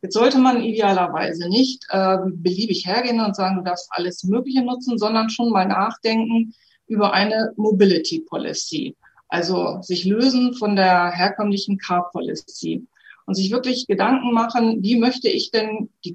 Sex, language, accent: female, German, German